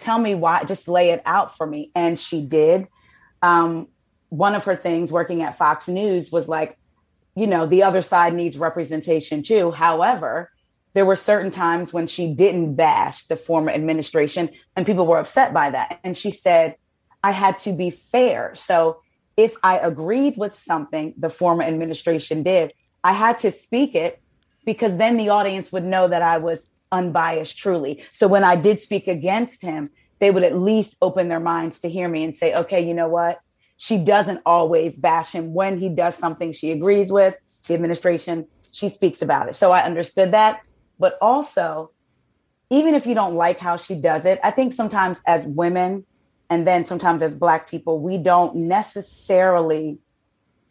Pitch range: 165-195 Hz